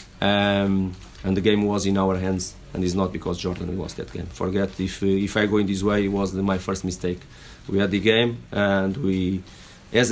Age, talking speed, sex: 40-59, 220 wpm, male